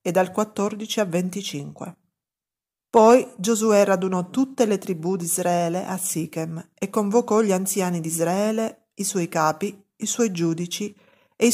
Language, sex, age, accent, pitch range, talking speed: Italian, female, 40-59, native, 170-220 Hz, 150 wpm